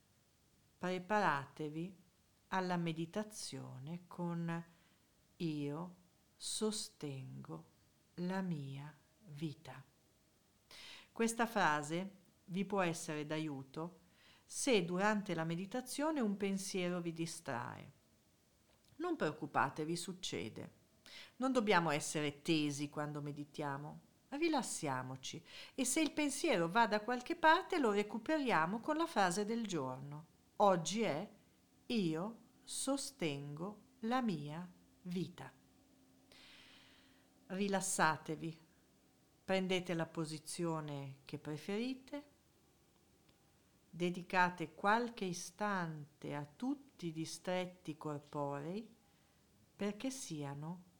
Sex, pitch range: female, 155-210 Hz